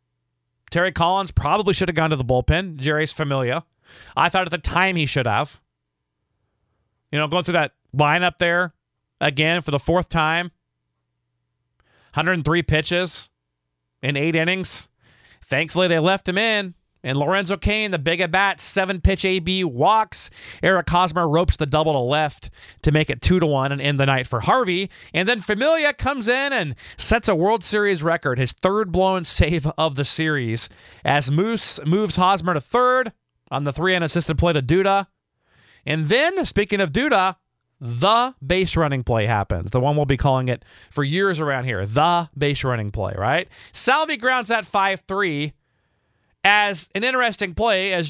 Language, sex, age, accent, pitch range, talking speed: English, male, 30-49, American, 130-180 Hz, 165 wpm